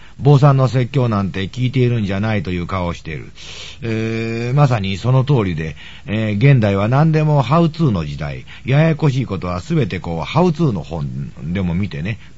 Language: Japanese